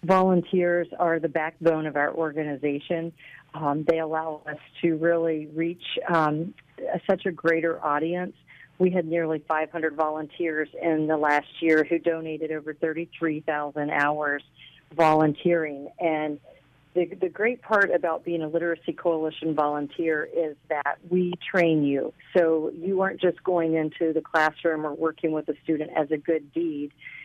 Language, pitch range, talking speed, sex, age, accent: English, 155-170 Hz, 150 wpm, female, 40-59, American